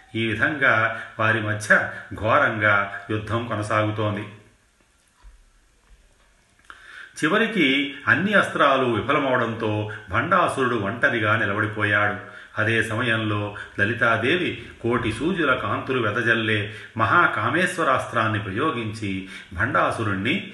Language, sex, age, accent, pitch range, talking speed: Telugu, male, 40-59, native, 100-115 Hz, 75 wpm